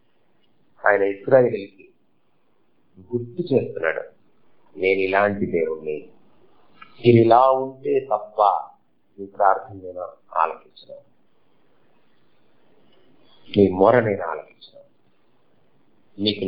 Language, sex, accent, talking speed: Telugu, male, native, 65 wpm